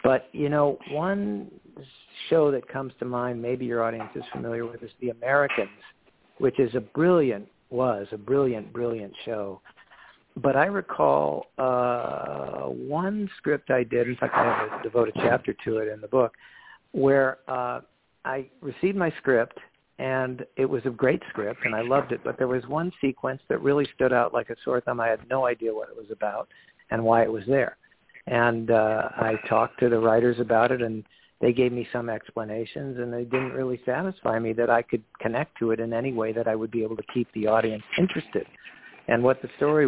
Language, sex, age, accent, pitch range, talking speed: English, male, 60-79, American, 115-130 Hz, 200 wpm